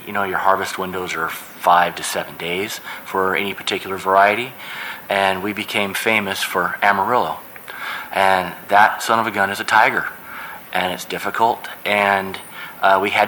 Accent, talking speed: American, 165 wpm